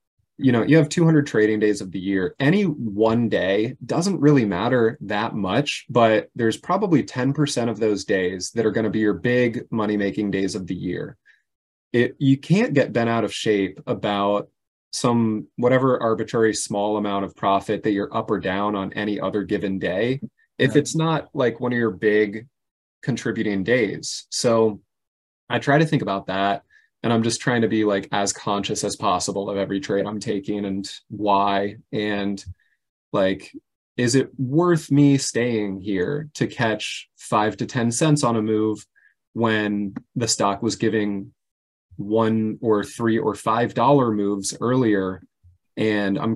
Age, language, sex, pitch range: 20-39, English, male, 100-125 Hz